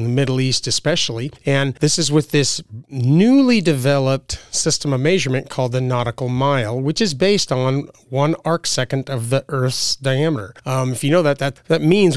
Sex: male